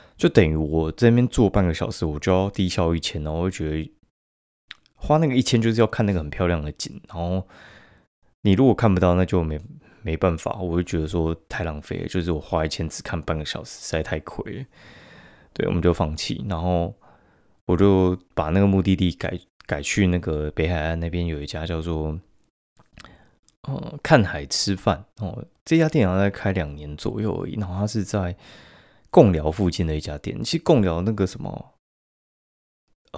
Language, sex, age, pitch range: Chinese, male, 20-39, 80-105 Hz